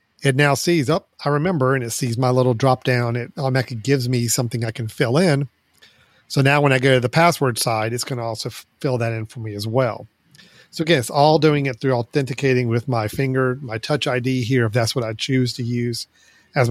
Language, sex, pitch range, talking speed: English, male, 120-140 Hz, 235 wpm